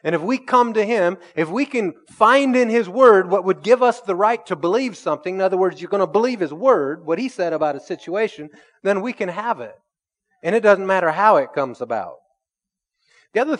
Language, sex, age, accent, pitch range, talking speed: English, male, 30-49, American, 150-205 Hz, 230 wpm